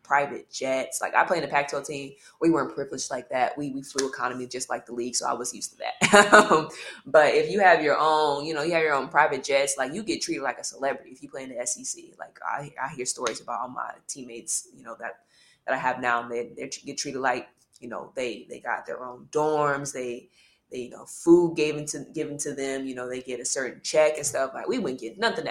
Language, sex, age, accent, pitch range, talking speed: English, female, 20-39, American, 130-165 Hz, 260 wpm